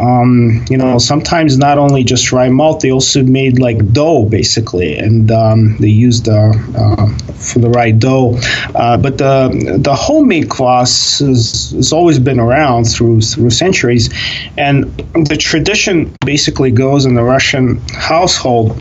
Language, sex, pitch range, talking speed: English, male, 110-130 Hz, 150 wpm